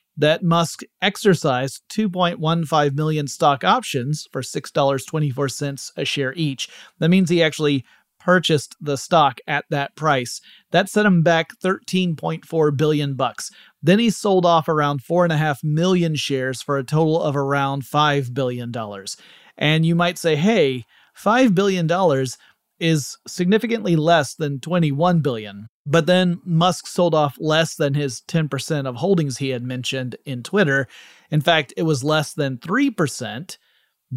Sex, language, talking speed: male, English, 145 wpm